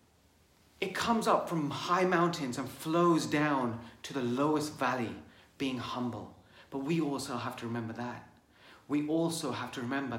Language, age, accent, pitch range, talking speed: English, 30-49, British, 125-185 Hz, 160 wpm